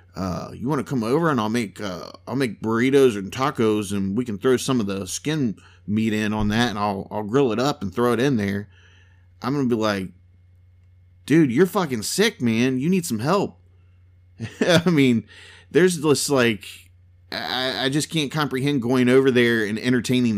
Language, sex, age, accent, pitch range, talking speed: English, male, 30-49, American, 95-125 Hz, 195 wpm